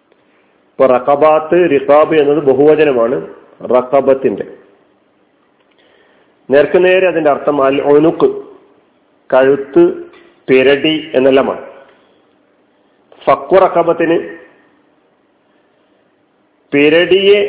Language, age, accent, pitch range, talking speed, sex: Malayalam, 40-59, native, 145-205 Hz, 45 wpm, male